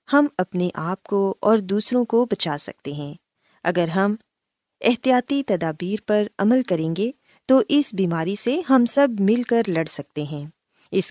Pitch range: 175-245 Hz